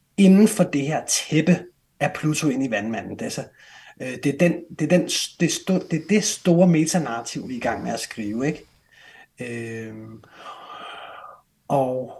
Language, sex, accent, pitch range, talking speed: Danish, male, native, 125-175 Hz, 120 wpm